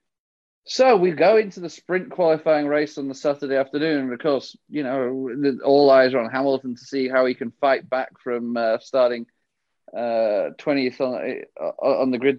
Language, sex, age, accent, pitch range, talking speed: English, male, 30-49, British, 120-145 Hz, 180 wpm